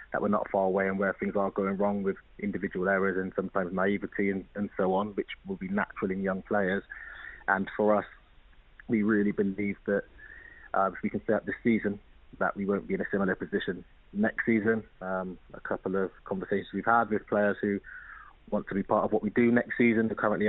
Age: 20-39